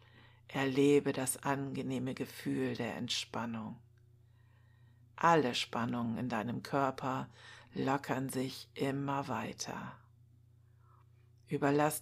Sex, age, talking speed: female, 60-79, 80 wpm